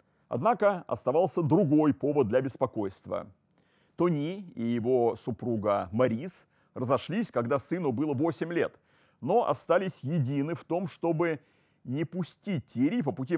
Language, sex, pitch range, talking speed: Russian, male, 120-165 Hz, 125 wpm